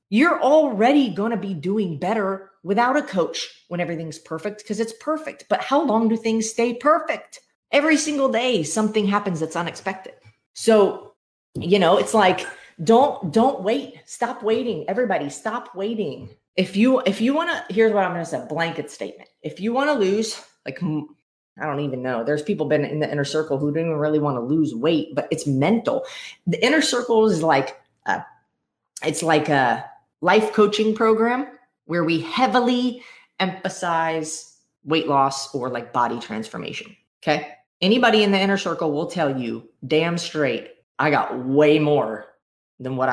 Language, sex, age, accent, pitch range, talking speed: English, female, 30-49, American, 150-225 Hz, 170 wpm